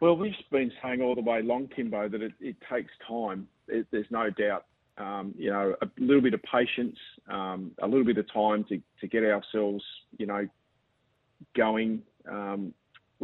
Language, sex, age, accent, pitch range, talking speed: English, male, 30-49, Australian, 105-125 Hz, 180 wpm